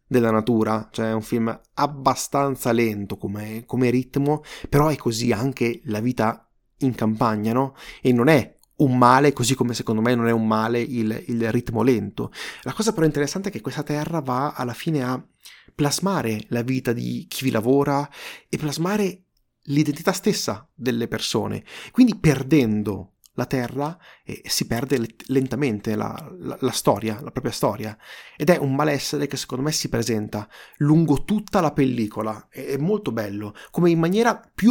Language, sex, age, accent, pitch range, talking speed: Italian, male, 30-49, native, 115-150 Hz, 165 wpm